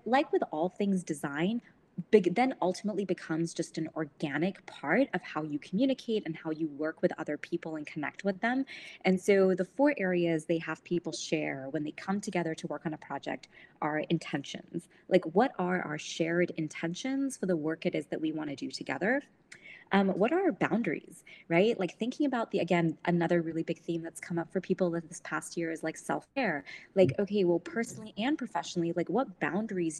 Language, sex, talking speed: English, female, 200 wpm